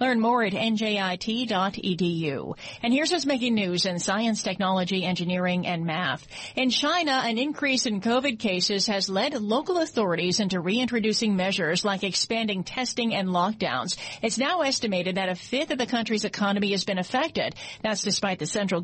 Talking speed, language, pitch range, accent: 160 wpm, English, 195-250 Hz, American